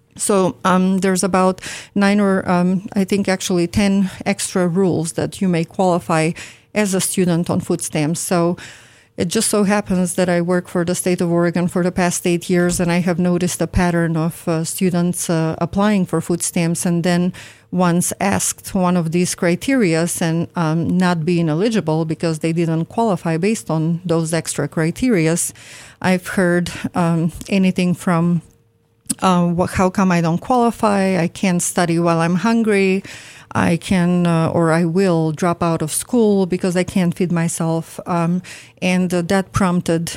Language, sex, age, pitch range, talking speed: English, female, 40-59, 165-185 Hz, 170 wpm